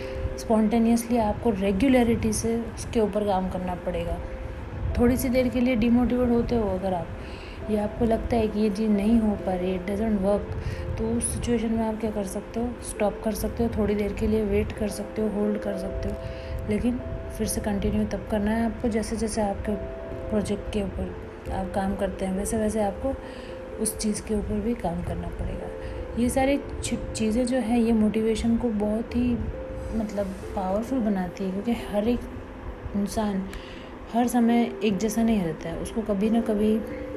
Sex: female